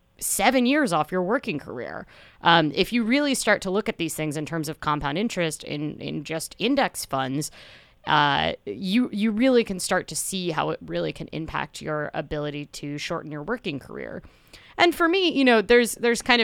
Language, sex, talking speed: English, female, 195 wpm